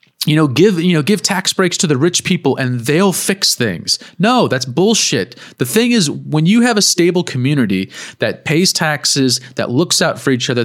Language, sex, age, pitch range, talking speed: English, male, 30-49, 120-155 Hz, 210 wpm